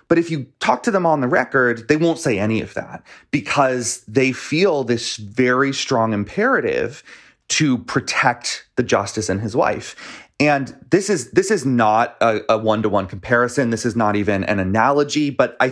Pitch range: 115-155 Hz